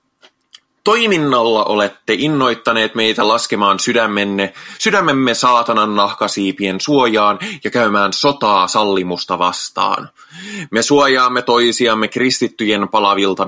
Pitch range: 100-140 Hz